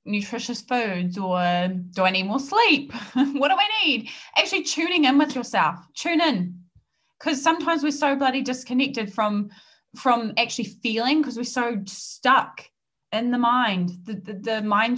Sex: female